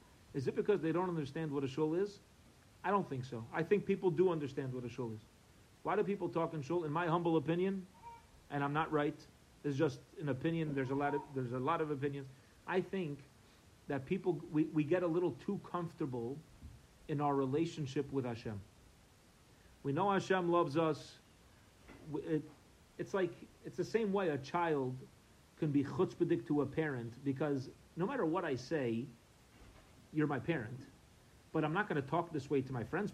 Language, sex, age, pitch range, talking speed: English, male, 40-59, 135-200 Hz, 185 wpm